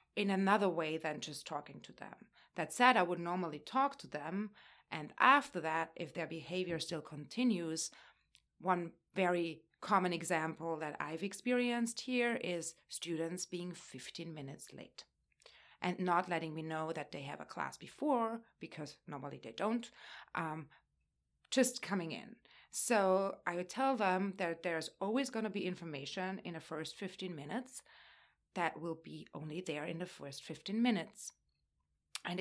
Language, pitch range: English, 160-195 Hz